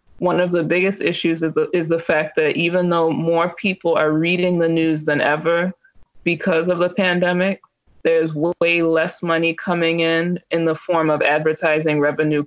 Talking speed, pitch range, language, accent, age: 175 wpm, 155-175 Hz, English, American, 20-39